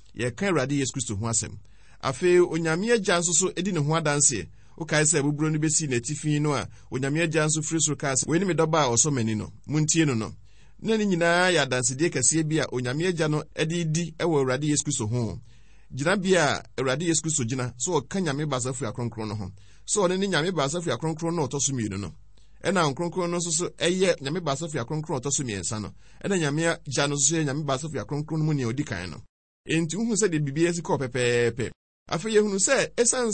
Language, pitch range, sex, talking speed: French, 120-165 Hz, male, 185 wpm